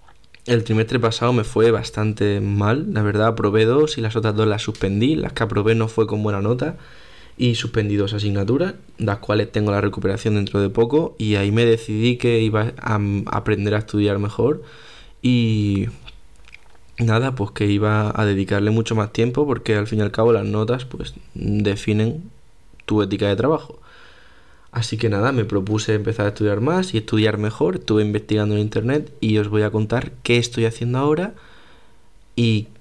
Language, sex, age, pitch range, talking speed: Spanish, male, 20-39, 105-115 Hz, 180 wpm